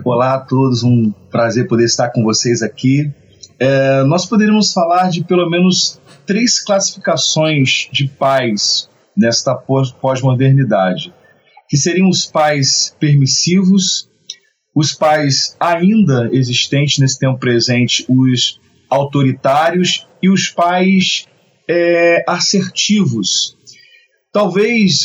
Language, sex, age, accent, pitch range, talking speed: Portuguese, male, 40-59, Brazilian, 140-185 Hz, 105 wpm